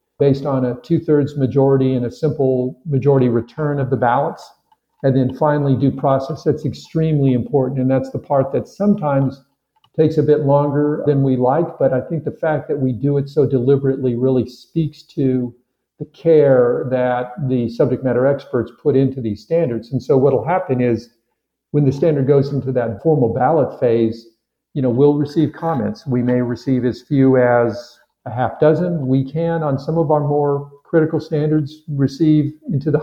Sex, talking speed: male, 180 wpm